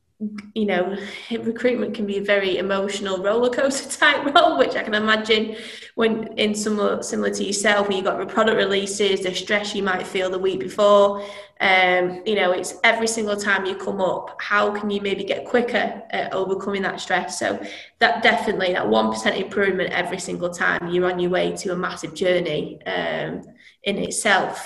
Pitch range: 190-230 Hz